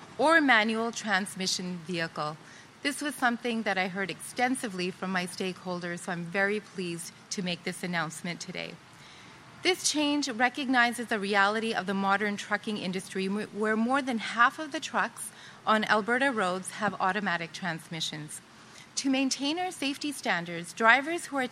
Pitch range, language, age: 180-245 Hz, English, 30-49